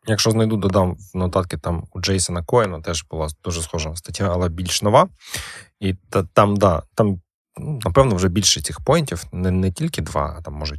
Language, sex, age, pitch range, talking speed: Ukrainian, male, 20-39, 85-110 Hz, 190 wpm